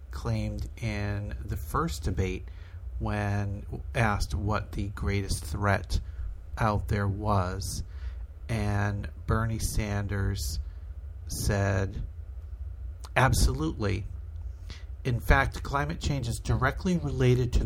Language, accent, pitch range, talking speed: English, American, 80-115 Hz, 90 wpm